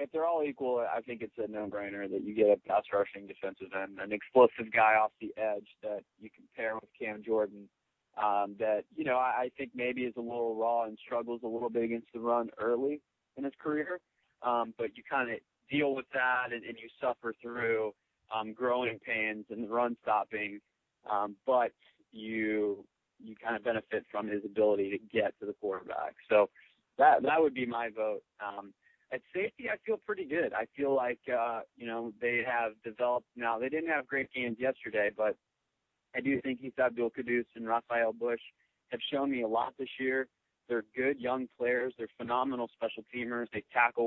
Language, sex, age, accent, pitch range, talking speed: English, male, 30-49, American, 110-130 Hz, 195 wpm